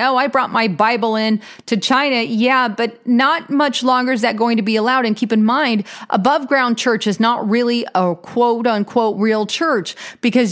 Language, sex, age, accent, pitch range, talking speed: English, female, 30-49, American, 205-255 Hz, 200 wpm